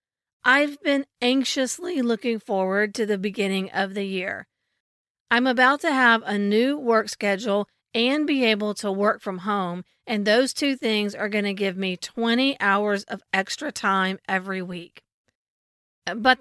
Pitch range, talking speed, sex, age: 195-235 Hz, 155 wpm, female, 40-59